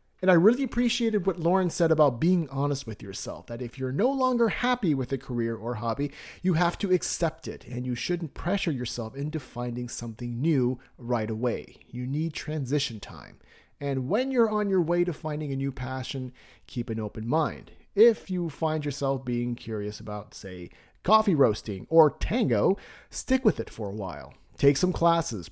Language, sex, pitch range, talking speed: English, male, 120-175 Hz, 185 wpm